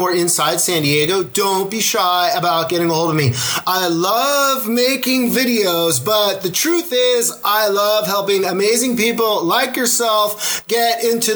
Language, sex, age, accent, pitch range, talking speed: English, male, 30-49, American, 185-235 Hz, 160 wpm